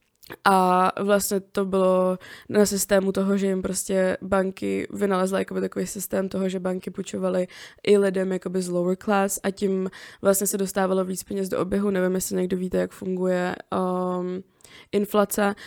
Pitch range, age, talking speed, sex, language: 185-200 Hz, 20-39, 155 wpm, female, Czech